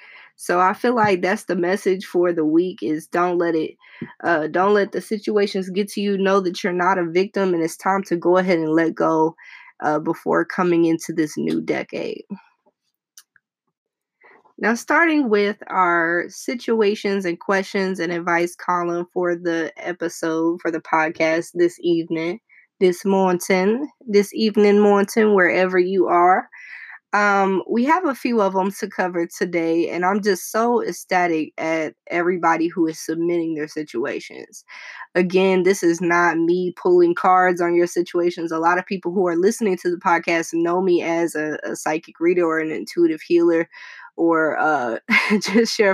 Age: 20-39